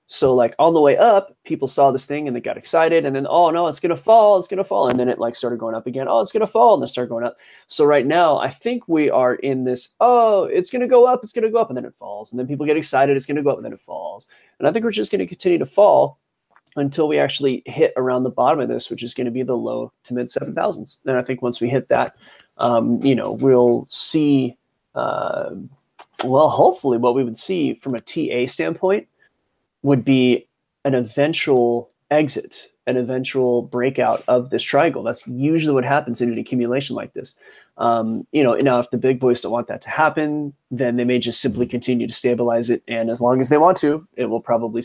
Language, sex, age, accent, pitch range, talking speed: English, male, 20-39, American, 125-150 Hz, 250 wpm